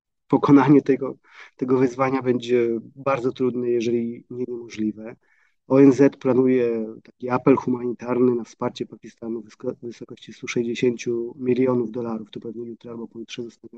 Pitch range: 115-130 Hz